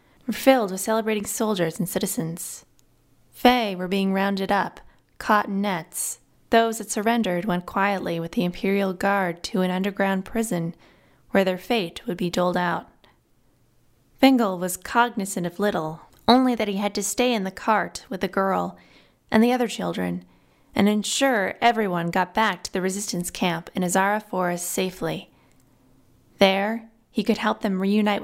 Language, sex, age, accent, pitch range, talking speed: English, female, 20-39, American, 175-215 Hz, 160 wpm